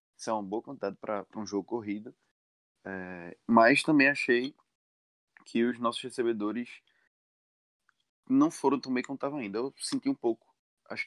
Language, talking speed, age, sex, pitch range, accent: Portuguese, 145 wpm, 20-39, male, 100-140 Hz, Brazilian